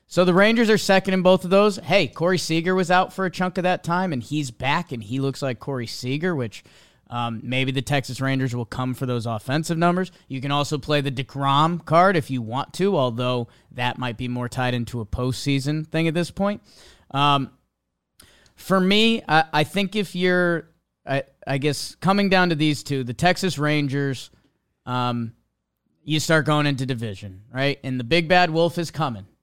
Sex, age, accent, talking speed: male, 20-39, American, 200 wpm